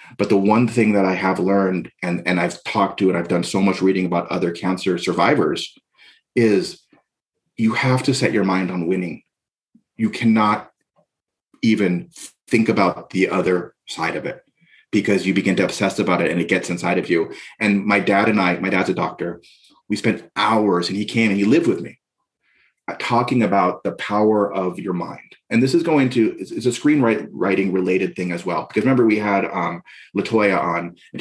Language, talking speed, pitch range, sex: English, 200 wpm, 95-115 Hz, male